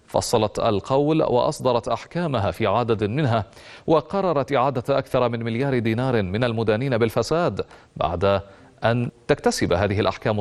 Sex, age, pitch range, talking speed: male, 30-49, 105-135 Hz, 120 wpm